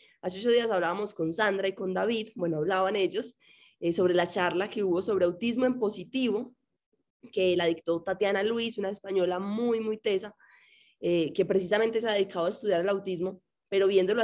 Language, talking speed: Spanish, 185 wpm